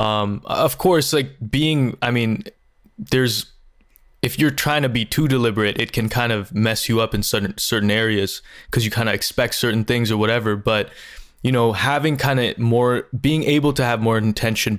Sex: male